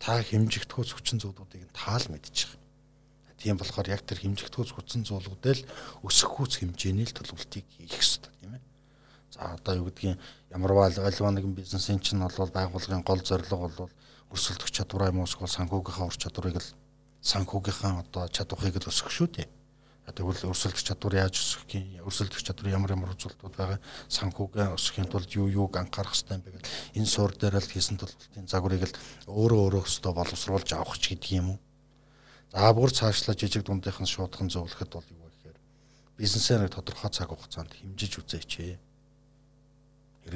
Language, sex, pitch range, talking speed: Russian, male, 90-120 Hz, 130 wpm